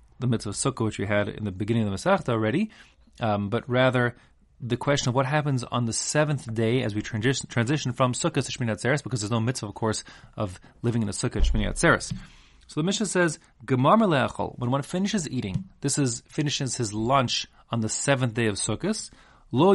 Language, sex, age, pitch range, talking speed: English, male, 30-49, 110-145 Hz, 205 wpm